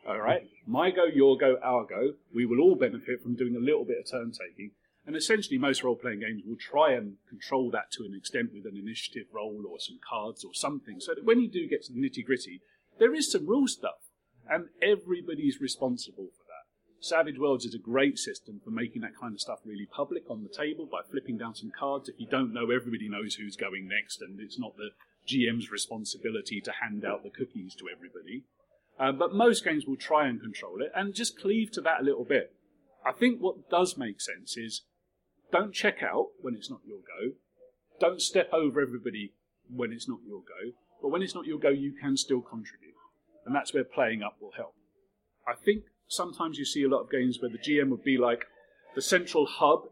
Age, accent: 40-59, British